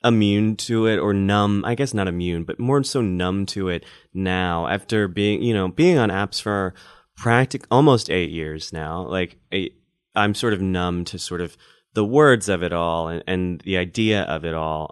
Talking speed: 200 wpm